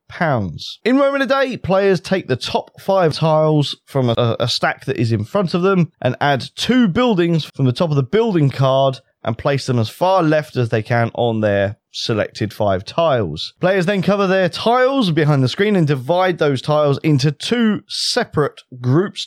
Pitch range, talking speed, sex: 130-185 Hz, 195 wpm, male